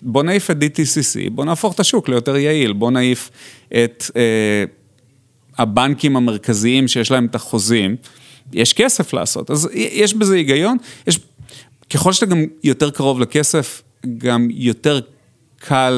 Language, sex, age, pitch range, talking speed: Hebrew, male, 30-49, 120-155 Hz, 140 wpm